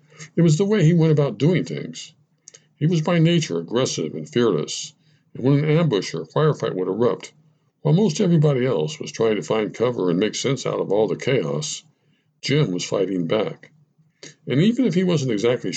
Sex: male